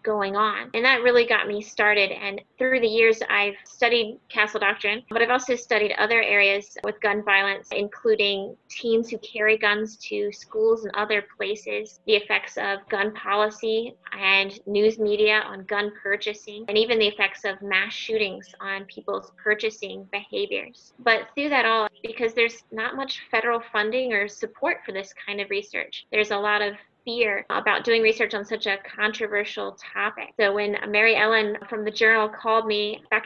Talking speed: 175 wpm